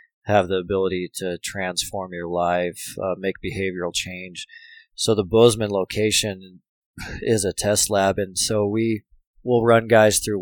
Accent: American